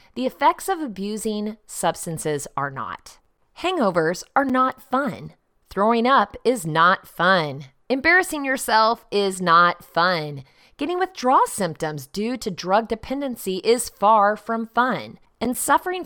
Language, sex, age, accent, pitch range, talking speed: English, female, 30-49, American, 170-255 Hz, 125 wpm